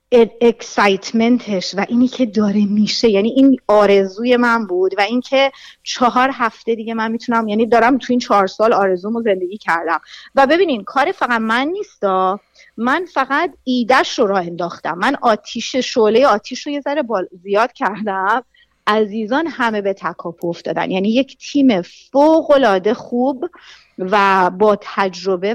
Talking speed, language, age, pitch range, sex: 150 wpm, Persian, 30-49, 190-245 Hz, female